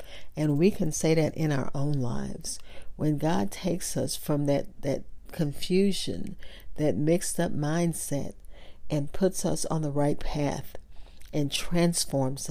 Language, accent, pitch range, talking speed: English, American, 140-180 Hz, 140 wpm